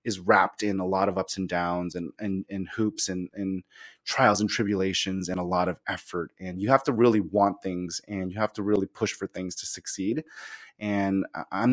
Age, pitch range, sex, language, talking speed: 30-49, 95-115 Hz, male, English, 215 wpm